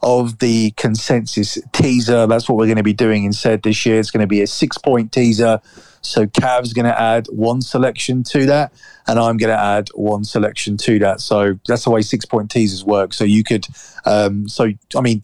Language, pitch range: English, 105-120 Hz